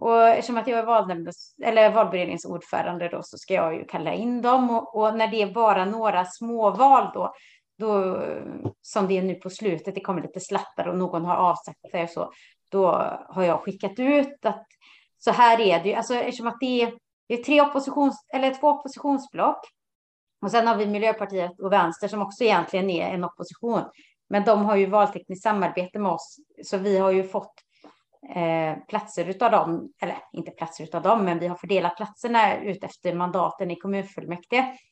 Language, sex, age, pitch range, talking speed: Swedish, female, 30-49, 175-230 Hz, 185 wpm